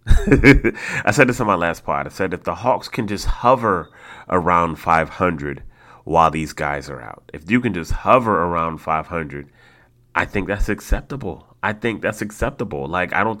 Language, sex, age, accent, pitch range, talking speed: English, male, 30-49, American, 80-100 Hz, 180 wpm